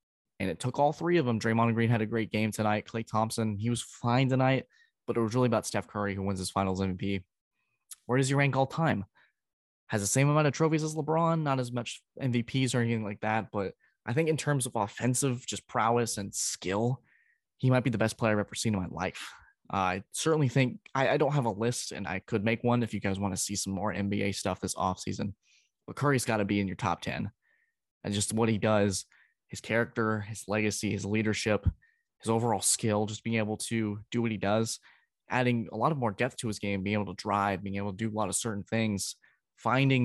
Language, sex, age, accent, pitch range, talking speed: English, male, 10-29, American, 100-120 Hz, 240 wpm